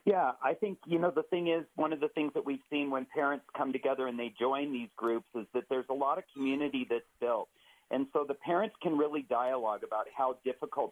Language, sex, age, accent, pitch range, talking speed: English, male, 40-59, American, 125-160 Hz, 235 wpm